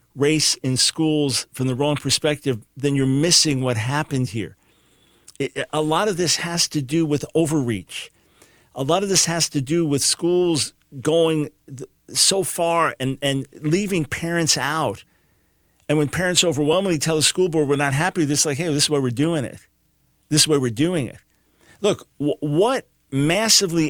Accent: American